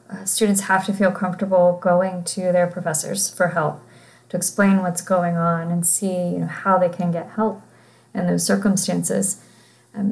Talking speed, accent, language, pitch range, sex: 160 wpm, American, English, 175-205 Hz, female